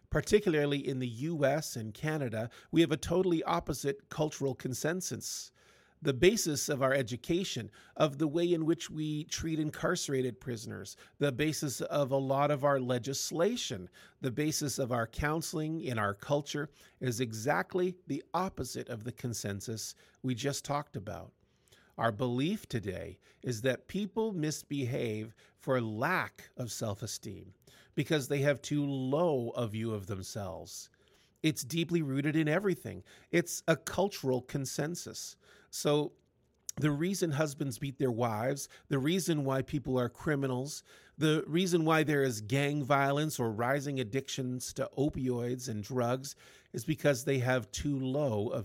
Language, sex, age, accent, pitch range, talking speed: English, male, 50-69, American, 120-155 Hz, 145 wpm